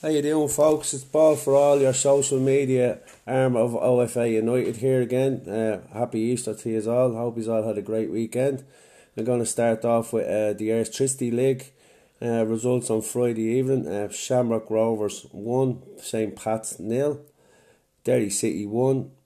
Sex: male